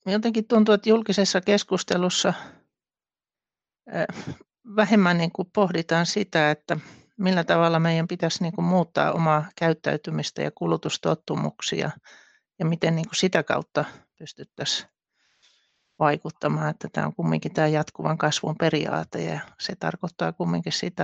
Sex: male